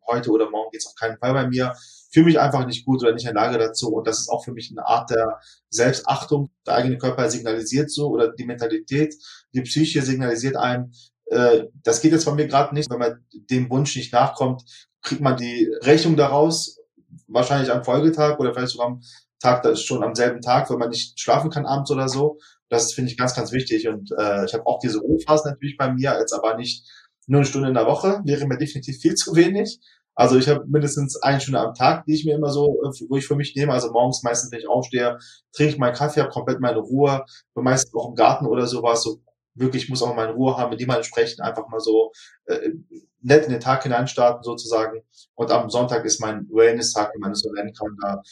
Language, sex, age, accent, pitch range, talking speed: German, male, 20-39, German, 115-145 Hz, 230 wpm